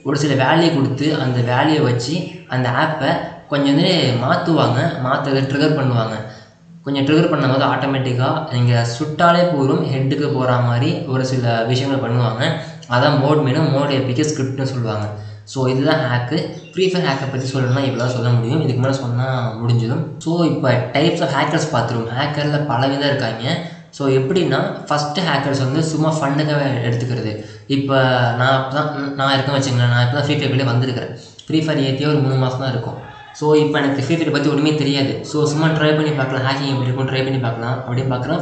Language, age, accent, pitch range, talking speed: Tamil, 20-39, native, 125-150 Hz, 165 wpm